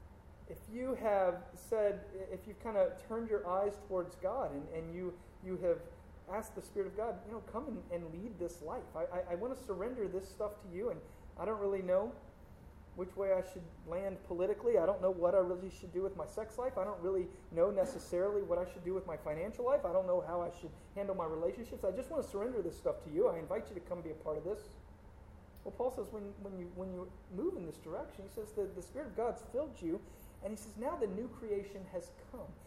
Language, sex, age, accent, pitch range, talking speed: English, male, 30-49, American, 175-230 Hz, 250 wpm